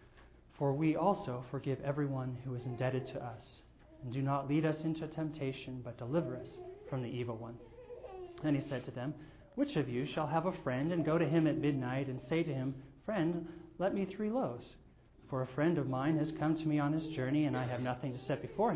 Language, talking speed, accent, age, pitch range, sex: English, 225 wpm, American, 30-49, 130-165 Hz, male